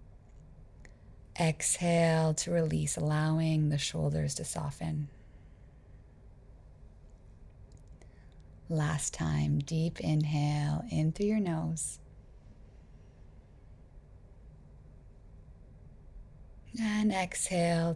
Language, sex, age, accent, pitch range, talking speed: English, female, 20-39, American, 145-190 Hz, 60 wpm